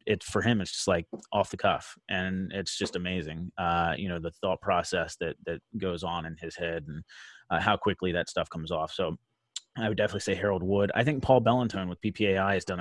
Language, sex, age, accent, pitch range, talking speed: English, male, 30-49, American, 85-100 Hz, 230 wpm